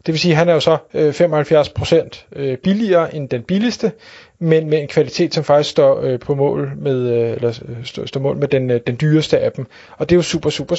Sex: male